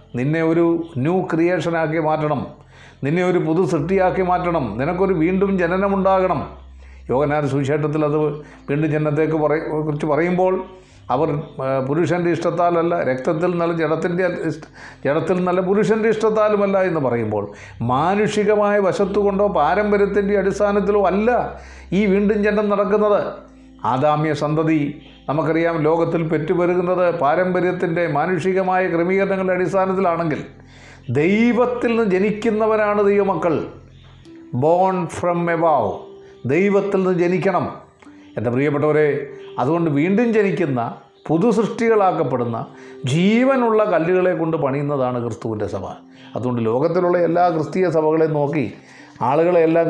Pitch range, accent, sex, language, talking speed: 145-190 Hz, native, male, Malayalam, 95 wpm